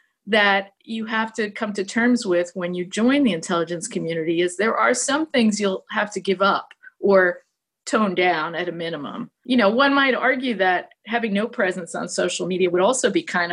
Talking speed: 205 wpm